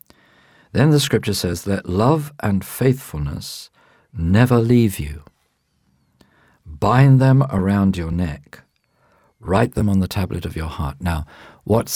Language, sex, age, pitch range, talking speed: English, male, 50-69, 85-105 Hz, 130 wpm